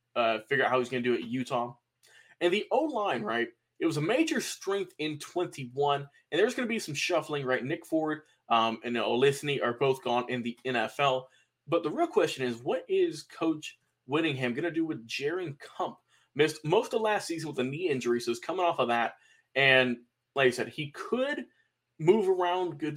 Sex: male